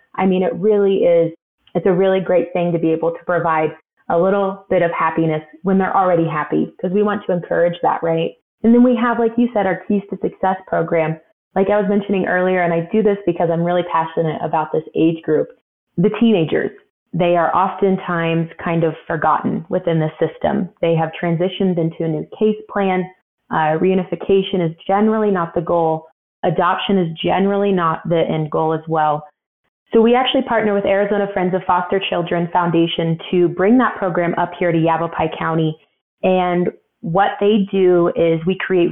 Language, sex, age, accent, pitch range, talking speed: English, female, 20-39, American, 165-200 Hz, 190 wpm